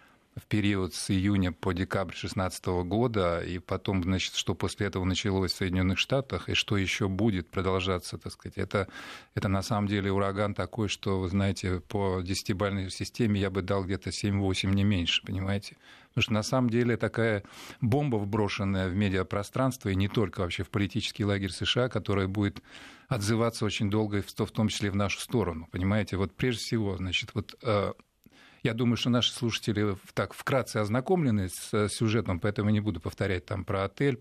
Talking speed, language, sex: 175 wpm, Russian, male